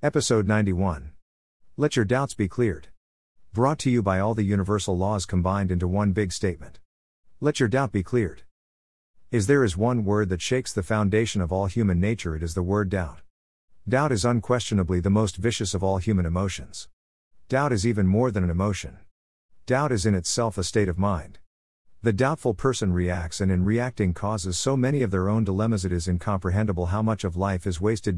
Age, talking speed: 50-69, 195 wpm